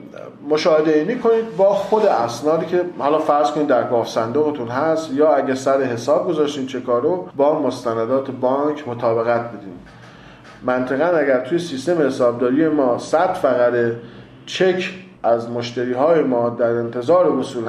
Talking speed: 135 wpm